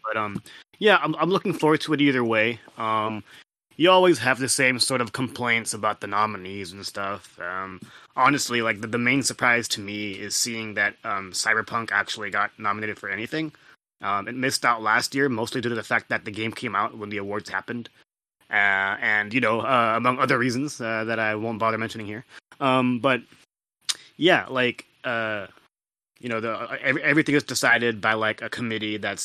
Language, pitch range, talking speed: English, 105-125 Hz, 195 wpm